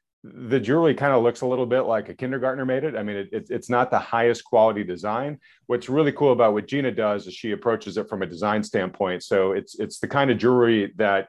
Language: English